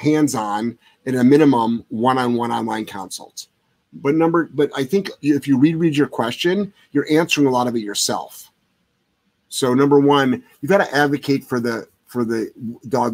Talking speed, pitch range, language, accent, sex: 165 wpm, 120-145 Hz, English, American, male